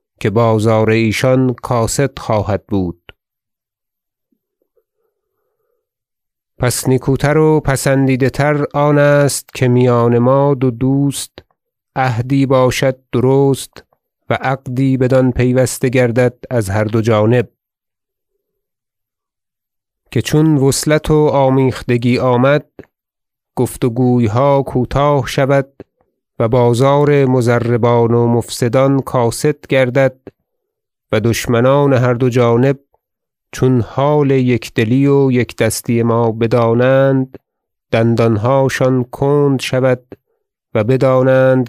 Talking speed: 95 wpm